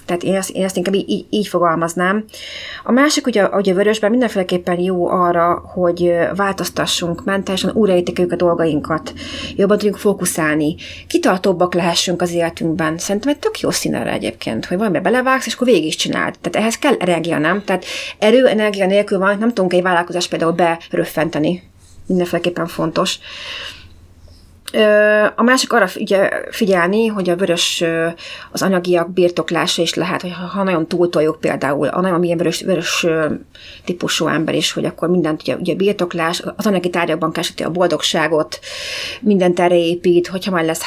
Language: Hungarian